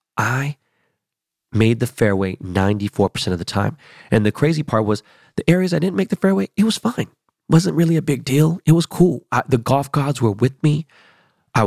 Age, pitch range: 30-49, 105-140 Hz